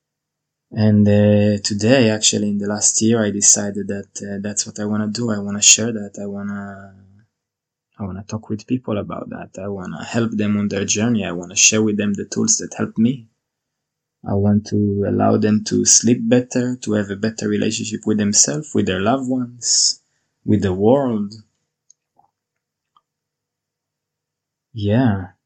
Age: 20-39